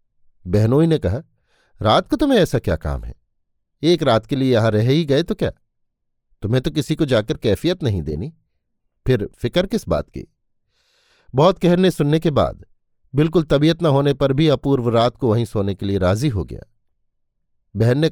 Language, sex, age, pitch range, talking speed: Hindi, male, 50-69, 110-155 Hz, 185 wpm